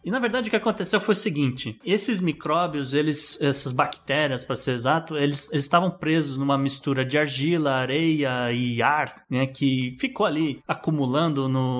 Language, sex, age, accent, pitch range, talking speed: Portuguese, male, 20-39, Brazilian, 135-190 Hz, 175 wpm